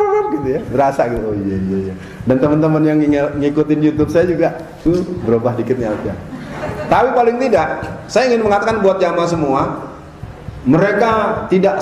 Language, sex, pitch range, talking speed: Malay, male, 145-195 Hz, 140 wpm